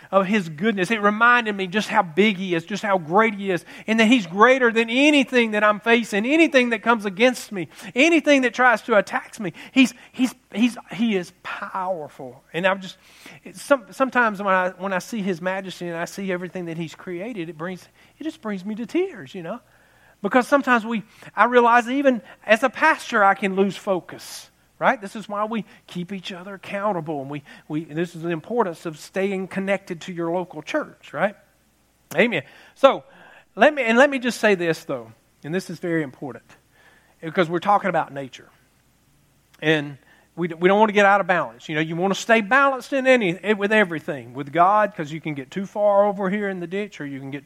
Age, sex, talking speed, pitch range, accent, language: 40-59, male, 210 wpm, 170-225 Hz, American, English